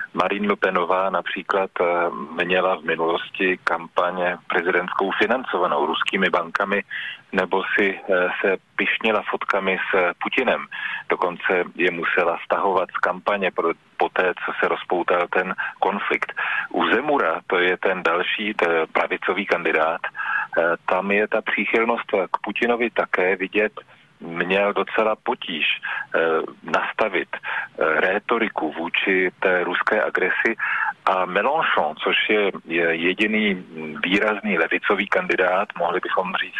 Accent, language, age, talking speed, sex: native, Czech, 40-59, 110 wpm, male